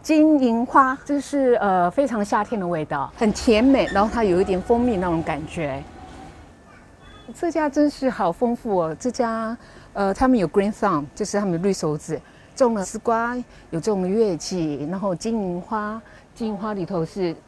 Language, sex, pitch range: Chinese, female, 155-210 Hz